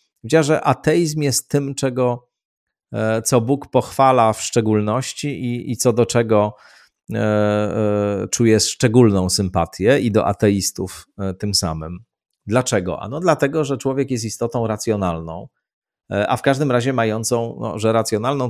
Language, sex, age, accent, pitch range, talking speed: Polish, male, 40-59, native, 95-120 Hz, 140 wpm